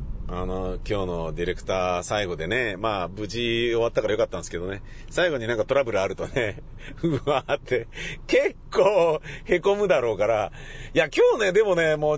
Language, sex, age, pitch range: Japanese, male, 40-59, 115-155 Hz